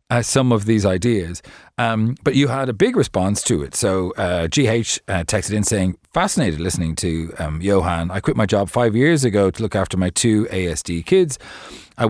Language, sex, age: English, male, 40-59